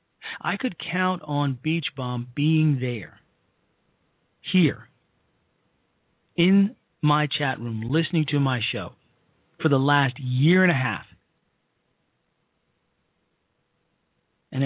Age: 40-59